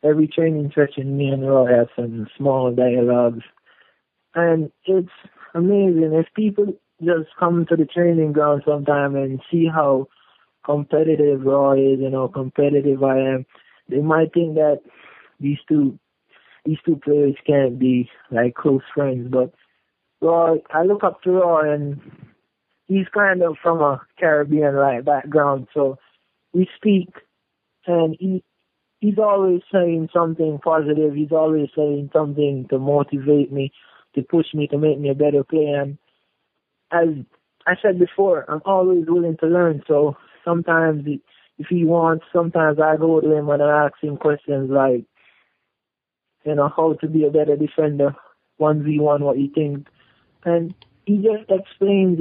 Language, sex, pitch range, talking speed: English, male, 140-170 Hz, 150 wpm